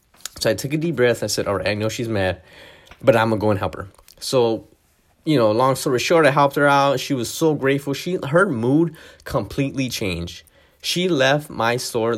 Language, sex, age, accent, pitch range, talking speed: English, male, 20-39, American, 105-150 Hz, 220 wpm